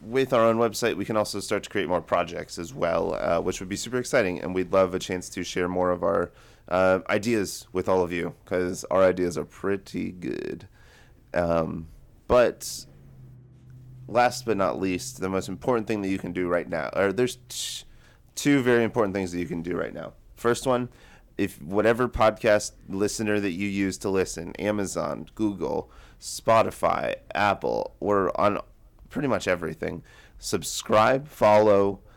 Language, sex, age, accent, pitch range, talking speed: English, male, 30-49, American, 95-120 Hz, 170 wpm